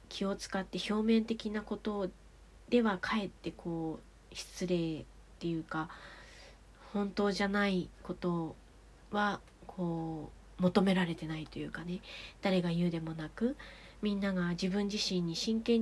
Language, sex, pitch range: Japanese, female, 170-215 Hz